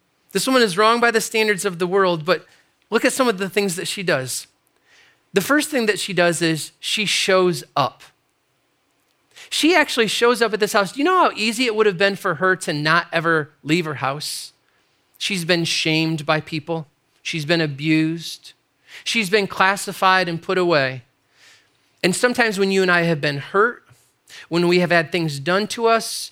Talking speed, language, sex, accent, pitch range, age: 195 wpm, English, male, American, 160-205 Hz, 30-49